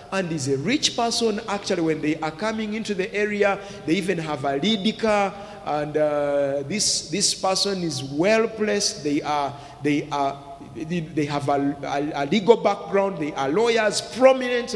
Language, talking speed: English, 165 wpm